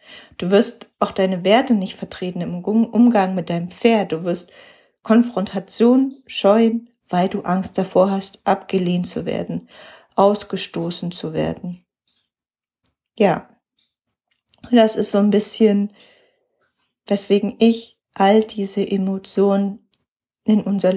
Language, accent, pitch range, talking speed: German, German, 190-230 Hz, 115 wpm